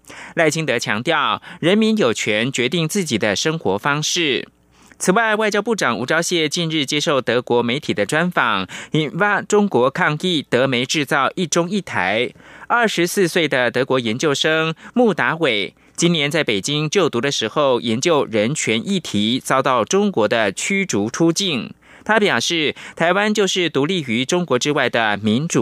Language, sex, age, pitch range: French, male, 20-39, 120-190 Hz